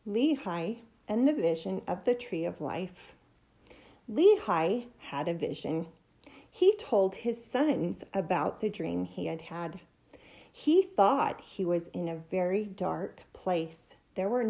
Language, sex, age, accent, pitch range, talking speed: English, female, 40-59, American, 180-255 Hz, 140 wpm